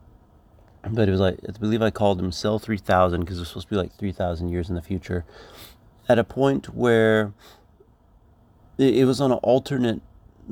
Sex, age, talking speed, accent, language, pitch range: male, 30-49, 185 wpm, American, English, 90-110 Hz